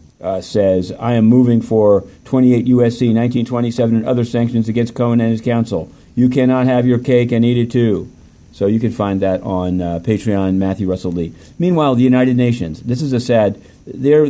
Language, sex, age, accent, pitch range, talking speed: English, male, 50-69, American, 105-125 Hz, 195 wpm